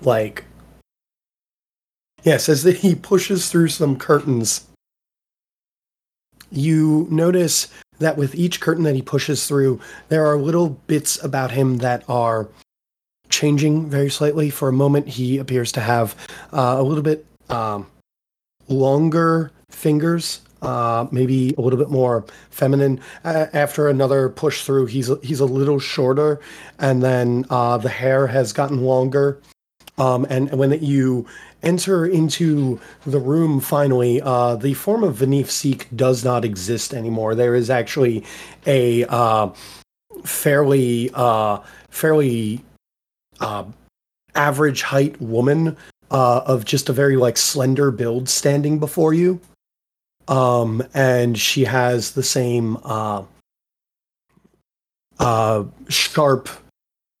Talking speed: 130 wpm